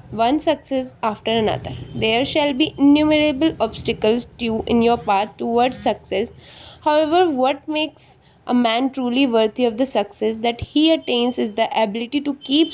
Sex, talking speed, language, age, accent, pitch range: female, 155 wpm, English, 20-39, Indian, 220-285 Hz